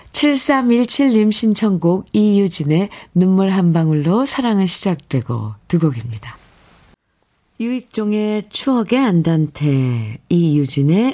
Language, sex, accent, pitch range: Korean, female, native, 150-225 Hz